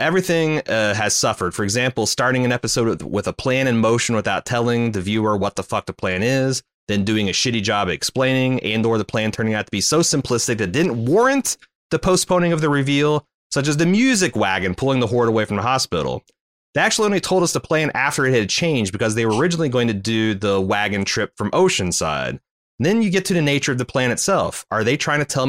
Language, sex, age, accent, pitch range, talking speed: English, male, 30-49, American, 105-145 Hz, 230 wpm